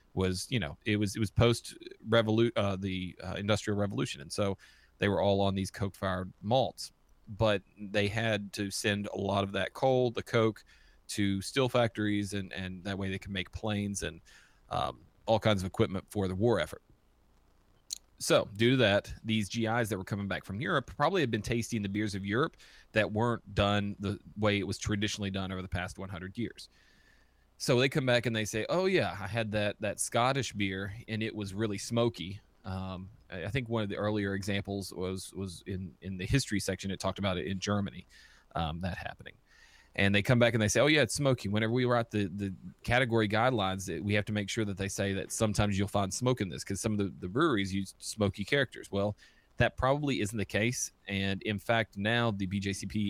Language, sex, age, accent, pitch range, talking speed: English, male, 30-49, American, 95-110 Hz, 215 wpm